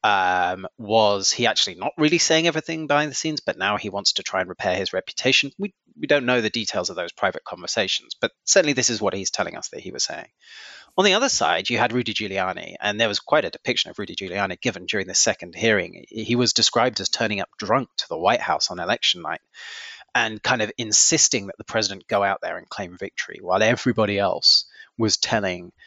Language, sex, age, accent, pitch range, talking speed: English, male, 30-49, British, 110-135 Hz, 225 wpm